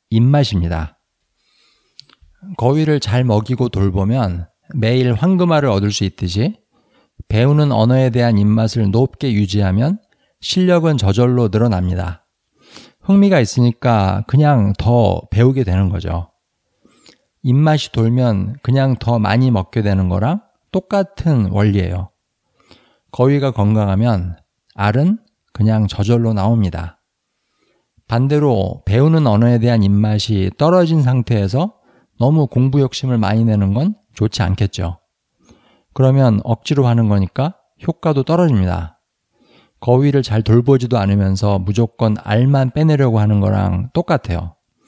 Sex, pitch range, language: male, 100-135 Hz, Korean